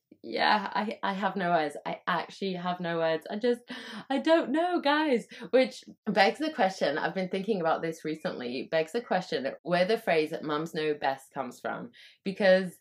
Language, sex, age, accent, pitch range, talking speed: English, female, 20-39, British, 160-245 Hz, 185 wpm